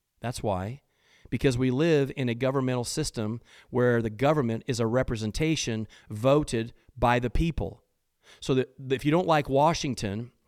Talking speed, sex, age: 150 wpm, male, 40-59